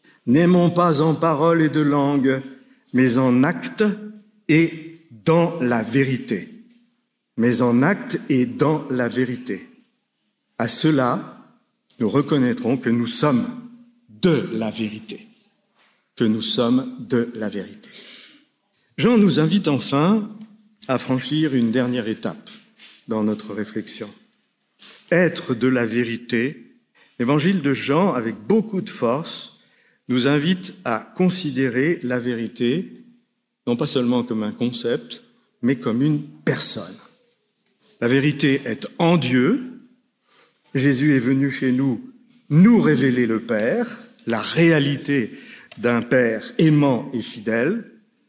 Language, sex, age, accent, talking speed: French, male, 60-79, French, 120 wpm